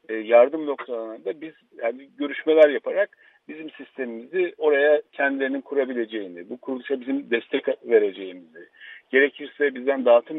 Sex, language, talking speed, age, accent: male, Turkish, 110 wpm, 50-69, native